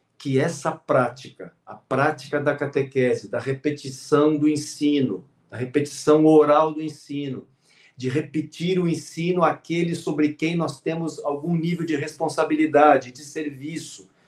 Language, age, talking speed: Portuguese, 50-69, 130 wpm